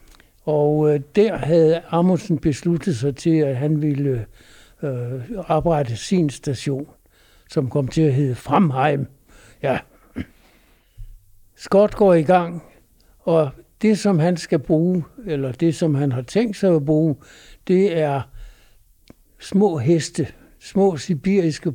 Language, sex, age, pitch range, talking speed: Danish, male, 60-79, 140-175 Hz, 125 wpm